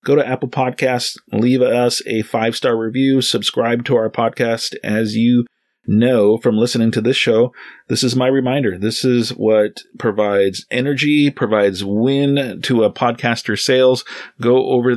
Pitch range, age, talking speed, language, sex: 100-120 Hz, 30-49, 150 wpm, English, male